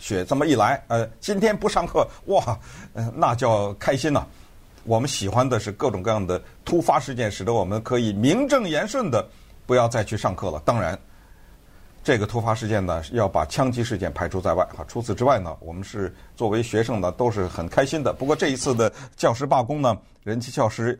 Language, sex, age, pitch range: Chinese, male, 50-69, 100-135 Hz